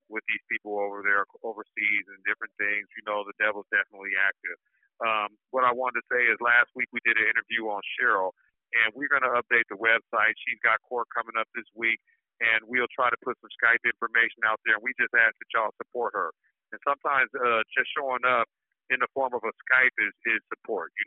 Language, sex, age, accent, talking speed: English, male, 50-69, American, 220 wpm